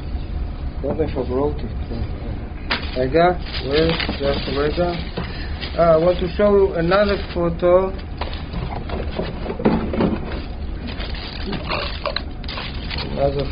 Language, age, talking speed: English, 50-69, 70 wpm